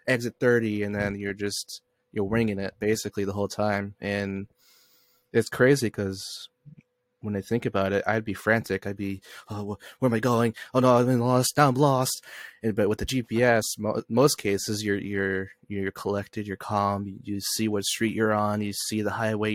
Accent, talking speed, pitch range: American, 195 wpm, 100-120 Hz